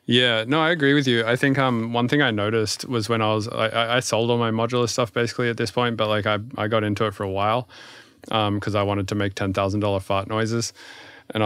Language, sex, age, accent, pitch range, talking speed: English, male, 20-39, American, 100-120 Hz, 250 wpm